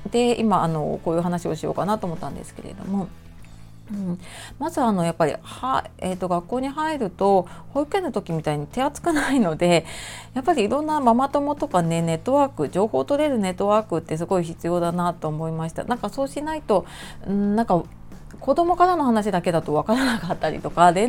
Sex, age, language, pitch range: female, 30-49, Japanese, 170-240 Hz